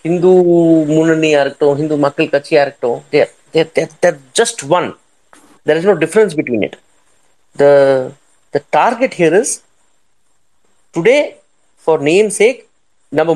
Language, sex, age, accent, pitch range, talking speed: Tamil, male, 30-49, native, 160-220 Hz, 90 wpm